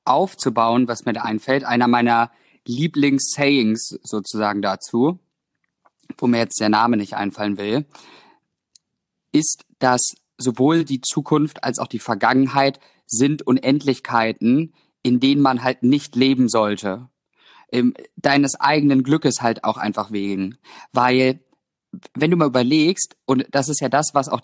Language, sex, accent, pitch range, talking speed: German, male, German, 125-155 Hz, 135 wpm